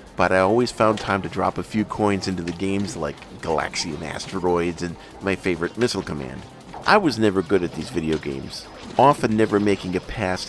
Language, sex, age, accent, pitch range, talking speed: English, male, 50-69, American, 90-115 Hz, 195 wpm